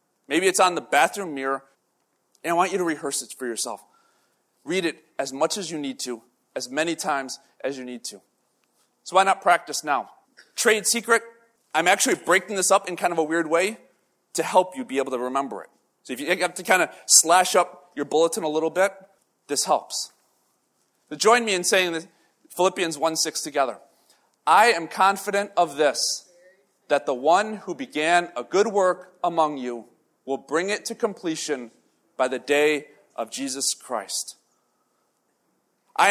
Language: English